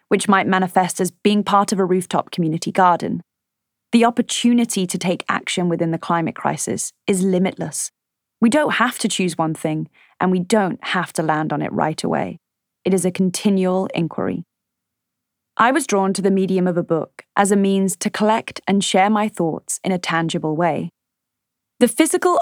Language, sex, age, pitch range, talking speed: English, female, 30-49, 180-215 Hz, 180 wpm